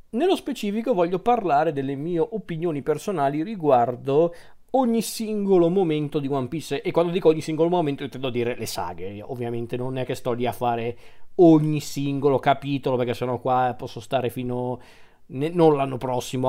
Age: 40-59